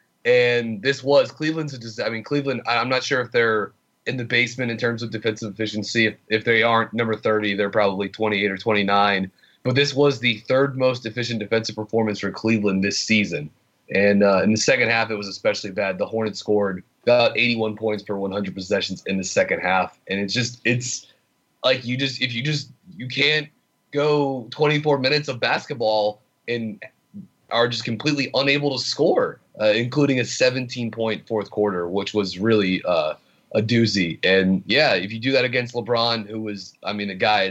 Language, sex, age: English, male, 30-49